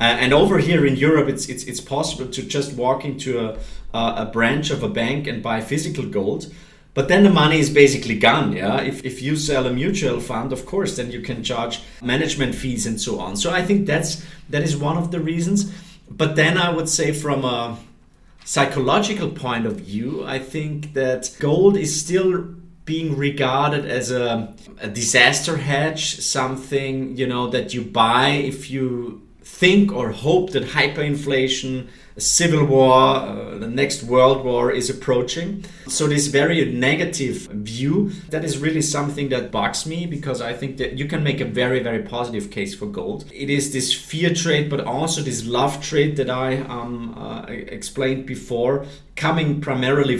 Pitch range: 125-155 Hz